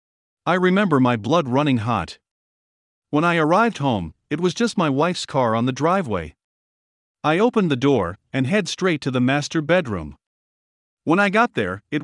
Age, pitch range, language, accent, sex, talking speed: 50-69, 120-165 Hz, English, American, male, 175 wpm